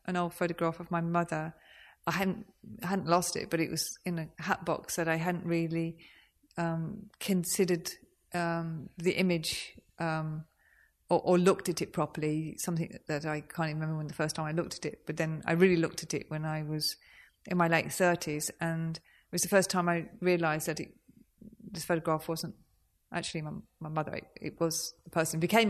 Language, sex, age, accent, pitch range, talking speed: English, female, 30-49, British, 160-180 Hz, 200 wpm